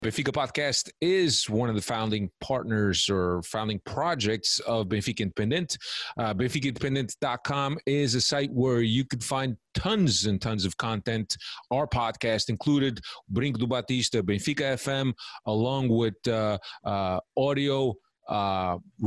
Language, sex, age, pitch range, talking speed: English, male, 30-49, 110-130 Hz, 130 wpm